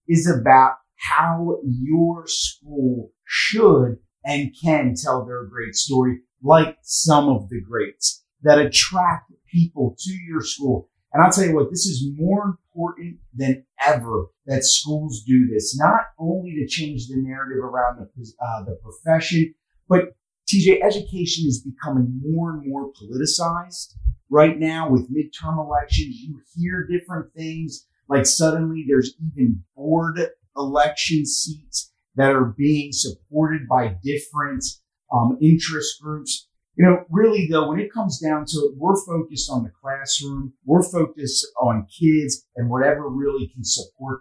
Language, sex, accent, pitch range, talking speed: English, male, American, 130-165 Hz, 145 wpm